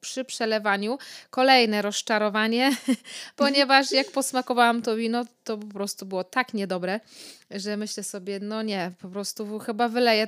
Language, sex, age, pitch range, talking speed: Polish, female, 20-39, 200-235 Hz, 140 wpm